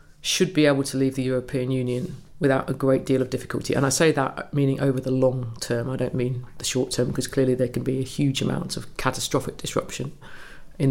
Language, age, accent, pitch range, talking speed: English, 40-59, British, 125-140 Hz, 225 wpm